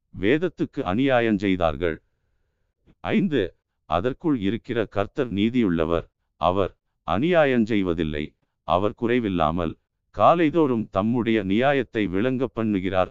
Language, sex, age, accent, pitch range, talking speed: Tamil, male, 50-69, native, 95-120 Hz, 80 wpm